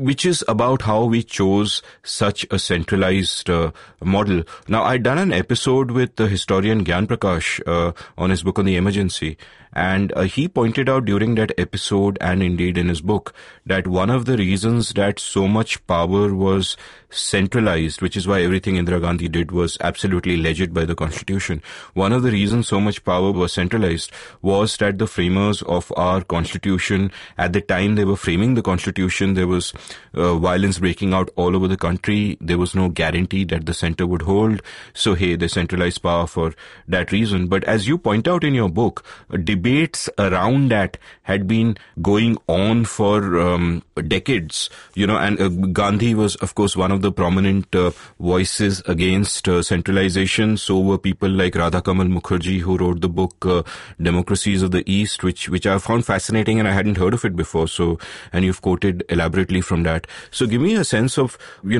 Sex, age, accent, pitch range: male, 30-49, Indian, 90-105 Hz